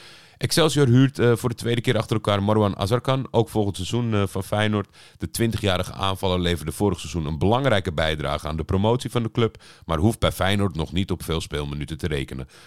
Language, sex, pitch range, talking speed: Dutch, male, 90-110 Hz, 205 wpm